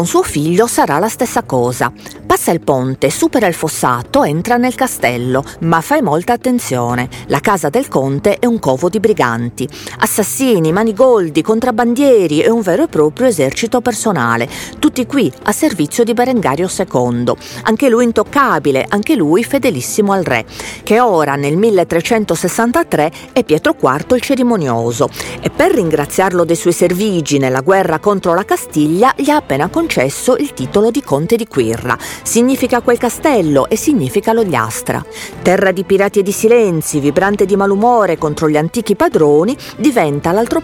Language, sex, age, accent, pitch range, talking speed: Italian, female, 40-59, native, 145-245 Hz, 155 wpm